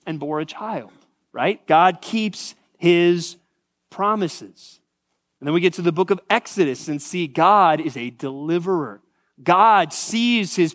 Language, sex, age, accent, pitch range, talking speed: English, male, 30-49, American, 135-180 Hz, 150 wpm